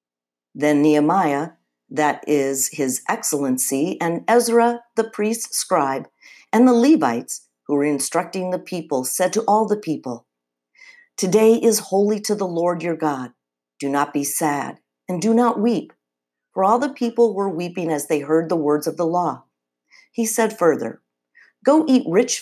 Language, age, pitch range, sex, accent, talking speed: English, 50-69, 125-195 Hz, female, American, 160 wpm